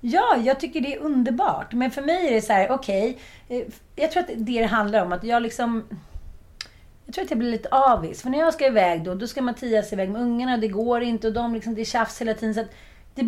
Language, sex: Swedish, female